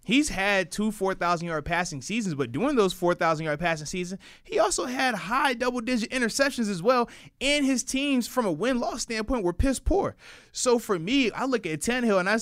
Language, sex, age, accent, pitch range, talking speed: English, male, 20-39, American, 160-235 Hz, 190 wpm